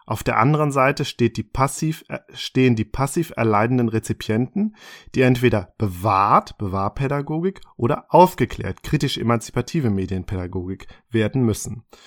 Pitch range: 115-145 Hz